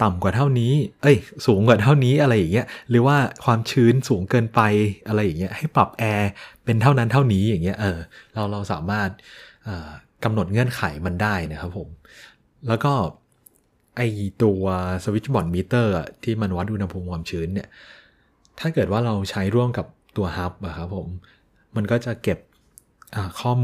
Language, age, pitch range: Thai, 20-39, 95-120 Hz